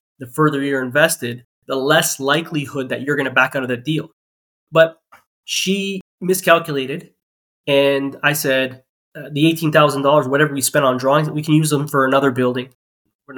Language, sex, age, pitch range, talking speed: English, male, 20-39, 130-160 Hz, 180 wpm